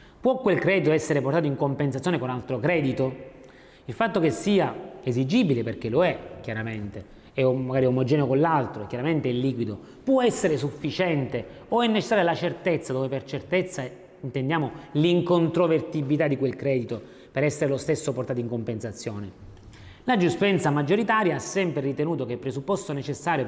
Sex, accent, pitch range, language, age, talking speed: male, native, 130-175 Hz, Italian, 30-49, 155 wpm